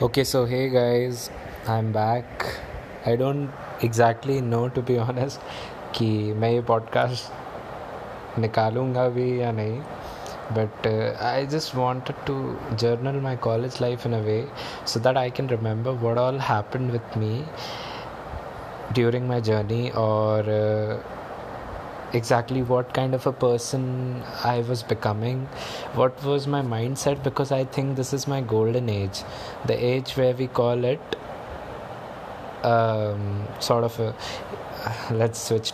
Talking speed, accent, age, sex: 135 wpm, Indian, 20-39, male